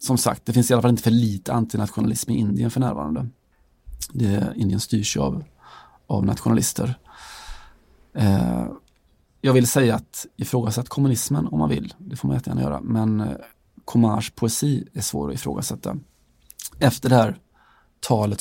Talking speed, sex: 160 wpm, male